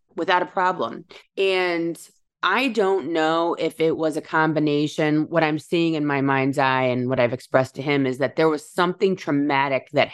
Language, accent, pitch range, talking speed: English, American, 140-165 Hz, 190 wpm